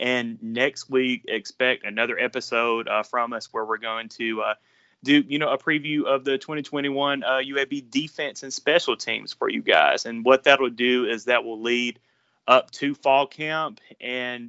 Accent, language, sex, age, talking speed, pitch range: American, English, male, 30-49, 185 wpm, 120-145 Hz